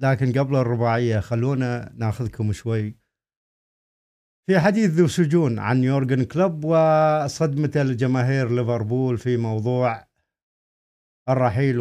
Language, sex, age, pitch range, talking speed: Arabic, male, 50-69, 110-140 Hz, 90 wpm